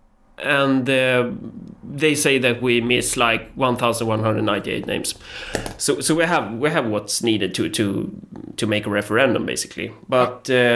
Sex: male